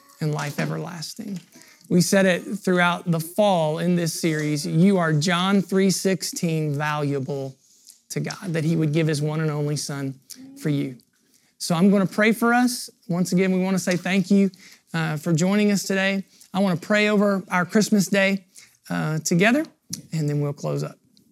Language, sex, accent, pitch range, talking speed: English, male, American, 155-195 Hz, 175 wpm